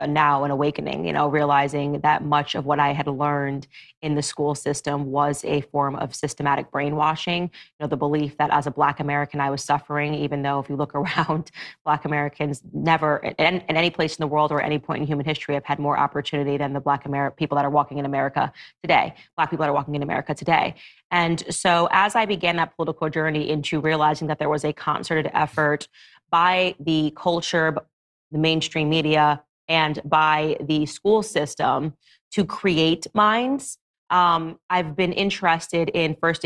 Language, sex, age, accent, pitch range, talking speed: English, female, 30-49, American, 150-165 Hz, 190 wpm